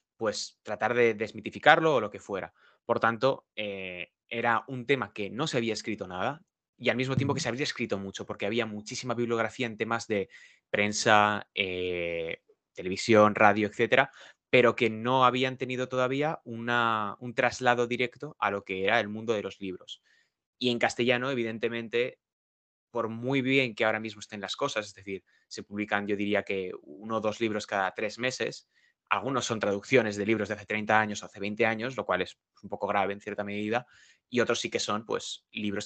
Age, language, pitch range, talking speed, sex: 20-39, Spanish, 100-125 Hz, 190 wpm, male